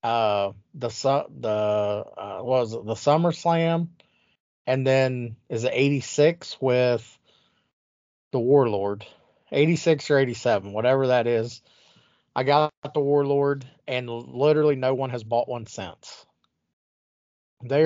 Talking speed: 120 wpm